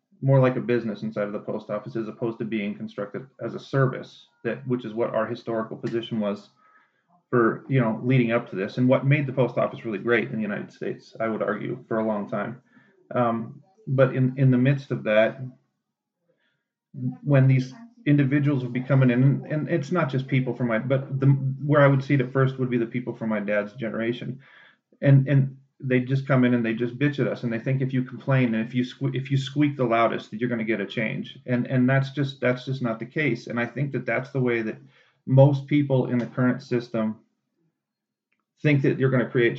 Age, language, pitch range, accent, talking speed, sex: 30-49, English, 115-135 Hz, American, 230 wpm, male